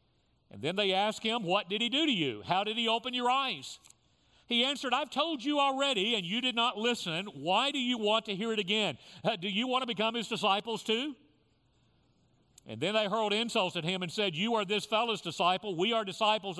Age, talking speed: 50-69, 220 wpm